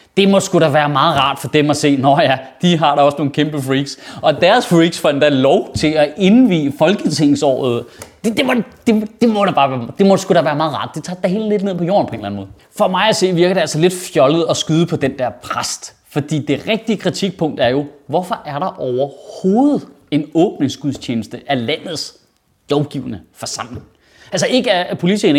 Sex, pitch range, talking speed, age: male, 140-200 Hz, 215 wpm, 30-49